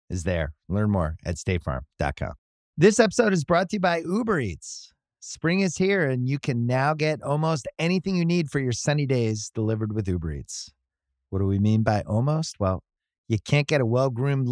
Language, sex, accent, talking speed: English, male, American, 195 wpm